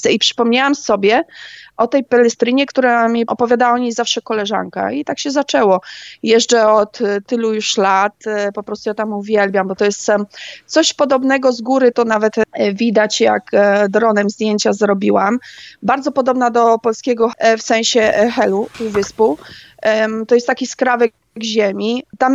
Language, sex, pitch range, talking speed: Polish, female, 210-240 Hz, 150 wpm